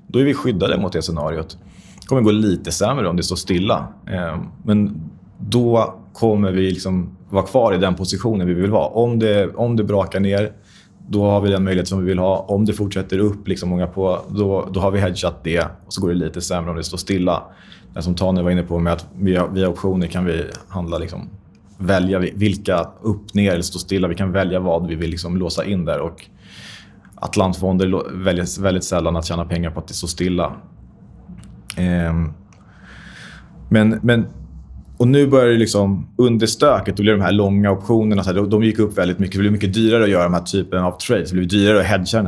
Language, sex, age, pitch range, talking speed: Swedish, male, 30-49, 90-100 Hz, 215 wpm